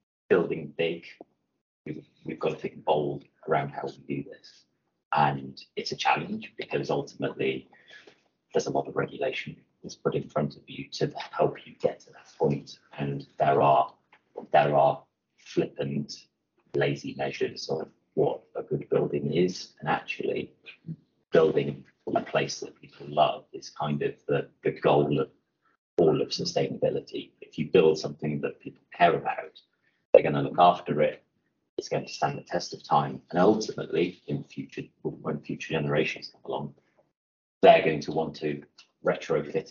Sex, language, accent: male, English, British